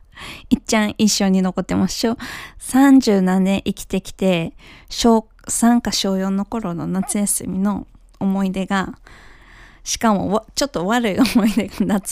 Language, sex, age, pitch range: Japanese, female, 20-39, 190-260 Hz